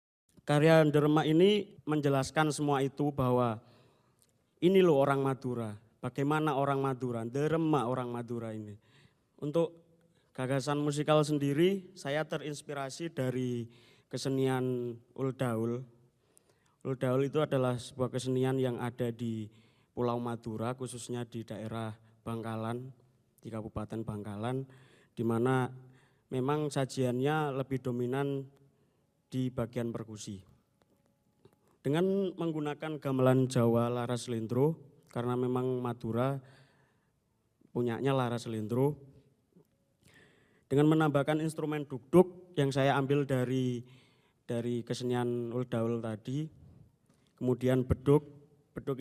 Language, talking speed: Indonesian, 100 wpm